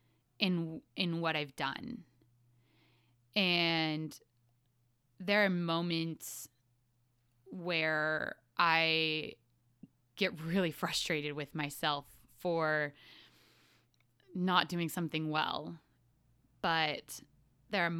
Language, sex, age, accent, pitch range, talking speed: English, female, 20-39, American, 130-165 Hz, 80 wpm